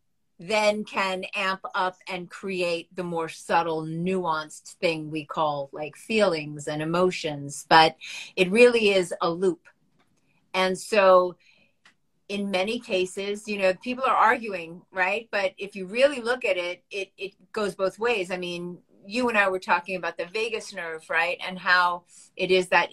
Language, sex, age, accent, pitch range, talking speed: English, female, 40-59, American, 175-200 Hz, 165 wpm